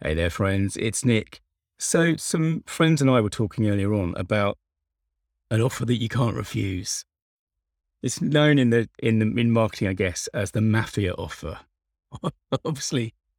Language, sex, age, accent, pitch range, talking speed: English, male, 30-49, British, 80-120 Hz, 160 wpm